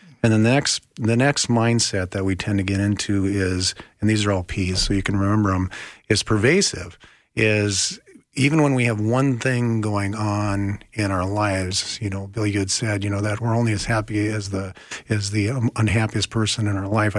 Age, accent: 50-69, American